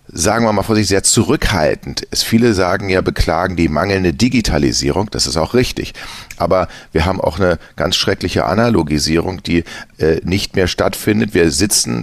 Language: German